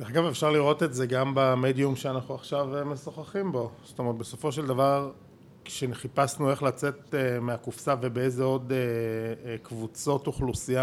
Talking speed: 140 wpm